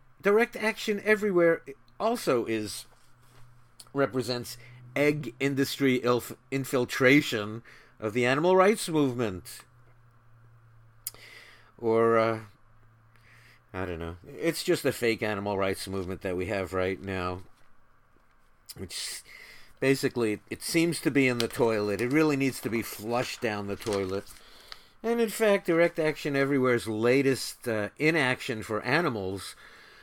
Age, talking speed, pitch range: 50-69, 120 wpm, 115-160 Hz